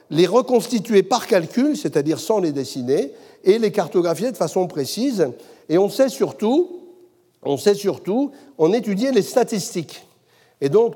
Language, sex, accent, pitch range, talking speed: French, male, French, 150-225 Hz, 150 wpm